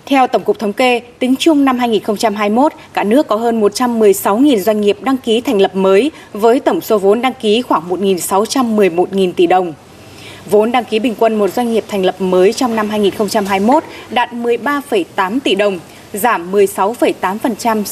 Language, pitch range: Vietnamese, 195-260 Hz